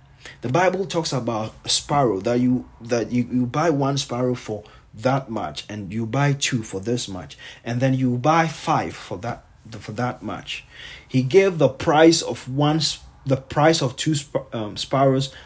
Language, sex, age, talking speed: English, male, 30-49, 180 wpm